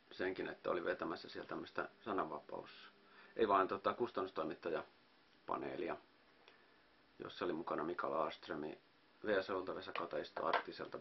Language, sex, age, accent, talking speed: Finnish, male, 40-59, native, 105 wpm